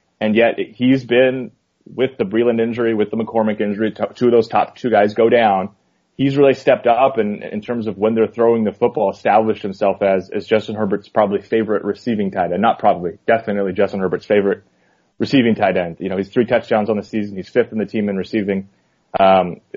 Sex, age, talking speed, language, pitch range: male, 30-49, 215 wpm, English, 95-115 Hz